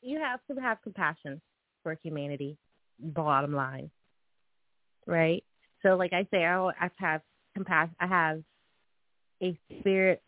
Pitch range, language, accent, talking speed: 160-205 Hz, English, American, 125 wpm